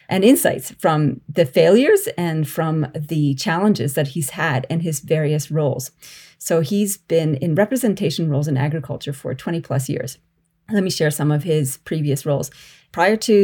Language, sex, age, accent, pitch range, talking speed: English, female, 30-49, American, 150-205 Hz, 170 wpm